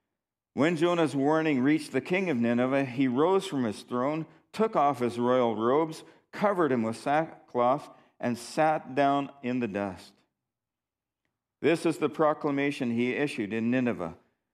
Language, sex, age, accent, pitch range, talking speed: English, male, 50-69, American, 125-170 Hz, 150 wpm